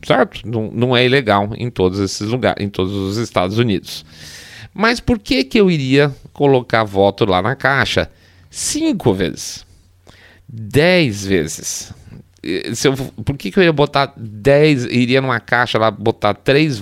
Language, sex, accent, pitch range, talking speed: Portuguese, male, Brazilian, 100-145 Hz, 160 wpm